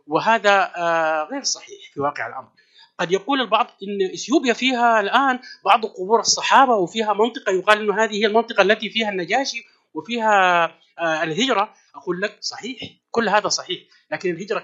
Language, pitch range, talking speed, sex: Arabic, 165-225 Hz, 150 wpm, male